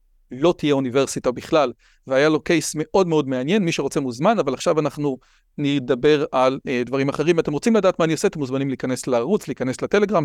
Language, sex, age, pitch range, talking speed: Hebrew, male, 40-59, 145-205 Hz, 195 wpm